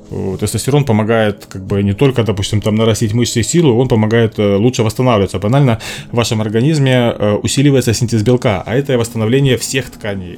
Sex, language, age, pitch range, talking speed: male, Russian, 20-39, 110-135 Hz, 185 wpm